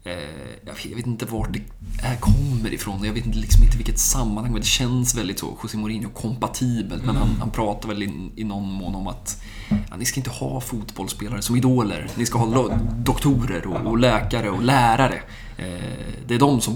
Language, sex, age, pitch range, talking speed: Swedish, male, 20-39, 100-120 Hz, 195 wpm